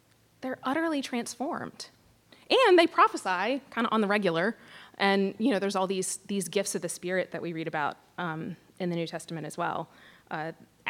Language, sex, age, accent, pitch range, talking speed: English, female, 20-39, American, 175-225 Hz, 185 wpm